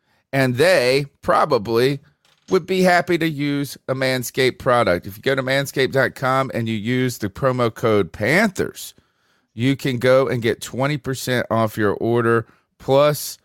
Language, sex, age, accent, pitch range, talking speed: English, male, 40-59, American, 95-130 Hz, 145 wpm